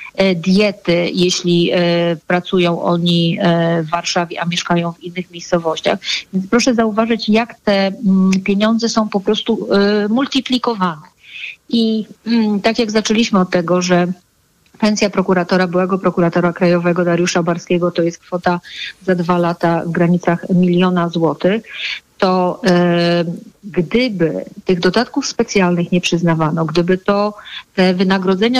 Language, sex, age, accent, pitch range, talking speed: Polish, female, 30-49, native, 175-200 Hz, 120 wpm